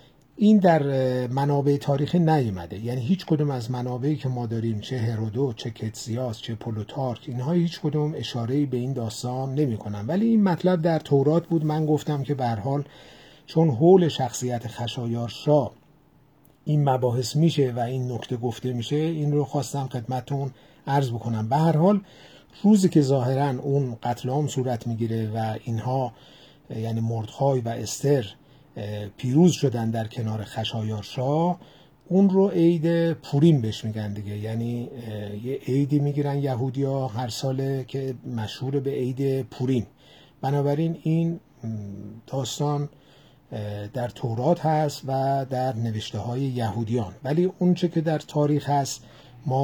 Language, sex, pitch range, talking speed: Persian, male, 115-150 Hz, 140 wpm